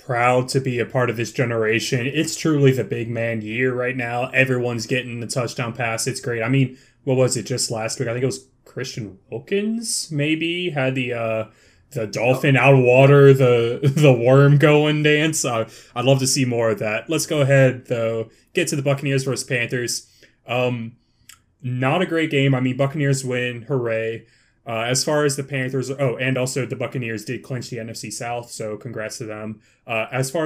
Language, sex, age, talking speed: English, male, 20-39, 200 wpm